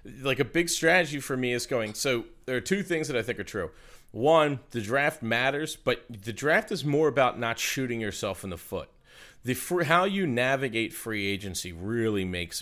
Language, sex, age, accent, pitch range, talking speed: English, male, 40-59, American, 100-140 Hz, 200 wpm